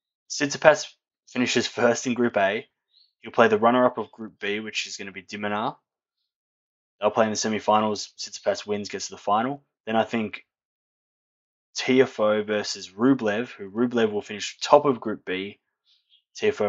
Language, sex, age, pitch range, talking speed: English, male, 10-29, 100-125 Hz, 160 wpm